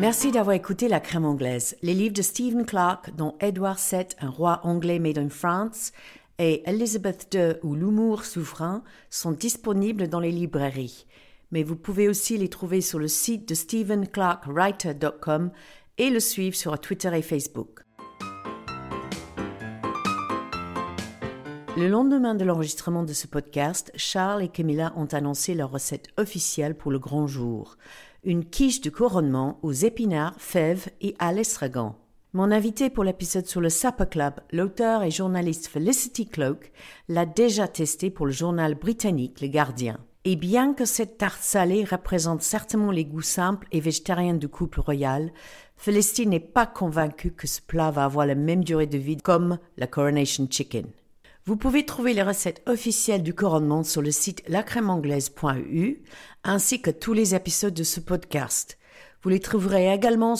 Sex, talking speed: female, 165 wpm